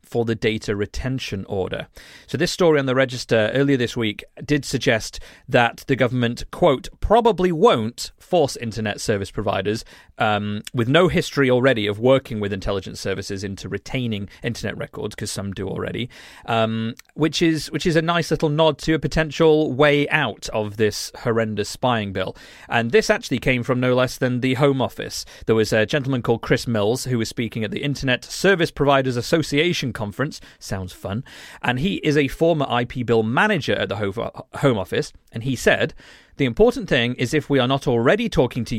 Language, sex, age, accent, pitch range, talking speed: English, male, 40-59, British, 110-145 Hz, 185 wpm